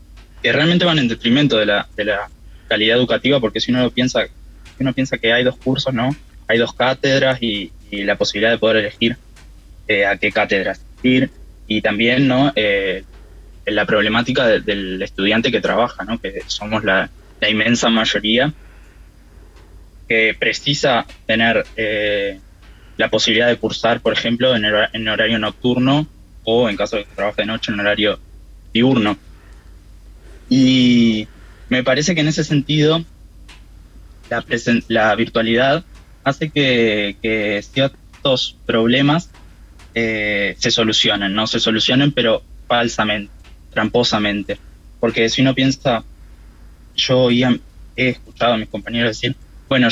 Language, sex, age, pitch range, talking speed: Spanish, male, 20-39, 105-130 Hz, 145 wpm